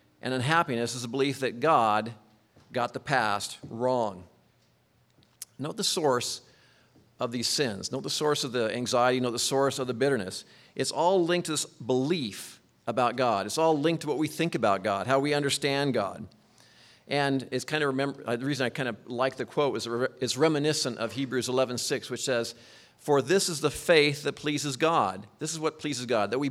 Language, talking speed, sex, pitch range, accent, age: English, 195 wpm, male, 120-155 Hz, American, 50-69